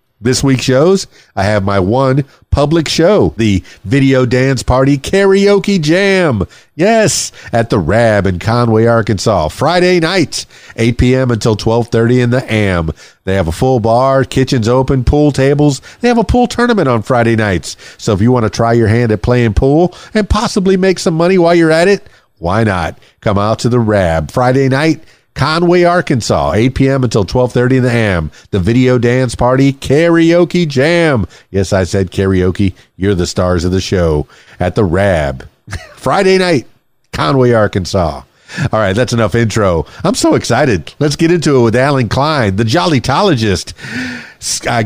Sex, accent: male, American